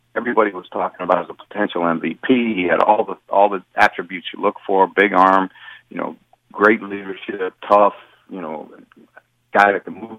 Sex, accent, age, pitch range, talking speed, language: male, American, 40-59, 95-110 Hz, 185 wpm, English